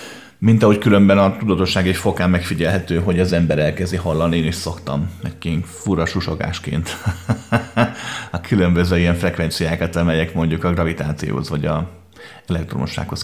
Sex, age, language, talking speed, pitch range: male, 30-49, Hungarian, 130 wpm, 85-105 Hz